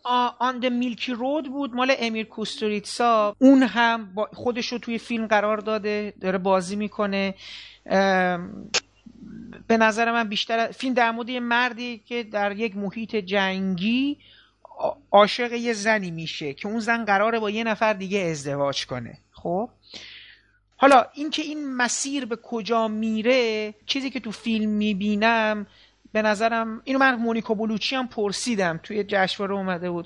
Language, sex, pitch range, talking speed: Persian, male, 205-250 Hz, 140 wpm